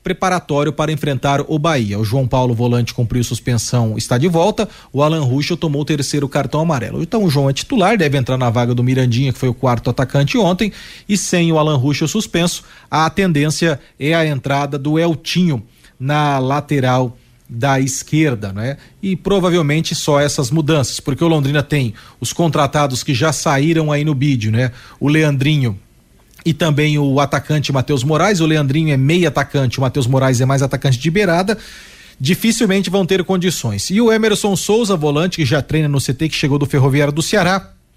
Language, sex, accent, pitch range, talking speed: Portuguese, male, Brazilian, 135-180 Hz, 185 wpm